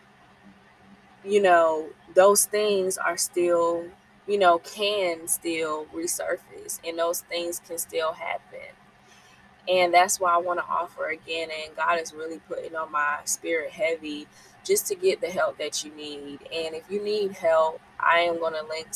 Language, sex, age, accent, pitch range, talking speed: English, female, 20-39, American, 160-190 Hz, 165 wpm